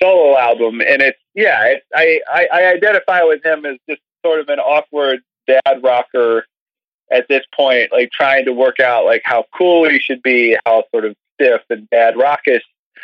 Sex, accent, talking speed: male, American, 190 wpm